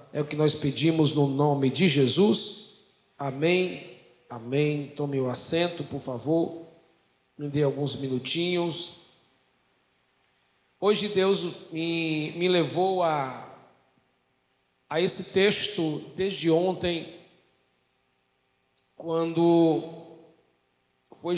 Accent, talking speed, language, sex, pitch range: Brazilian, 95 wpm, Portuguese, male, 145-180 Hz